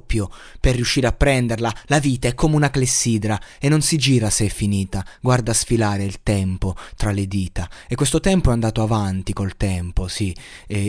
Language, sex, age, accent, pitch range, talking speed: Italian, male, 20-39, native, 105-135 Hz, 185 wpm